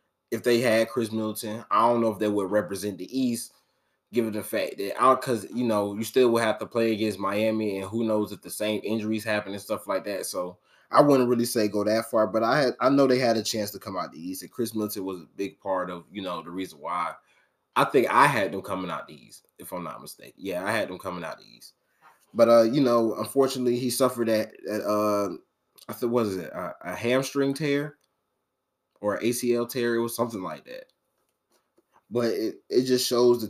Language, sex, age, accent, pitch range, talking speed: English, male, 20-39, American, 105-120 Hz, 225 wpm